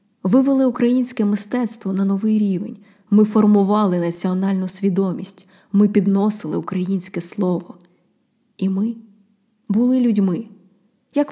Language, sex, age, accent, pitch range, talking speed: Ukrainian, female, 20-39, native, 180-225 Hz, 100 wpm